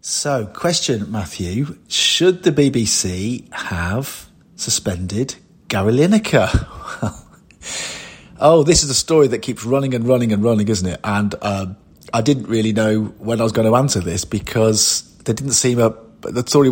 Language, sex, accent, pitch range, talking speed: English, male, British, 105-130 Hz, 160 wpm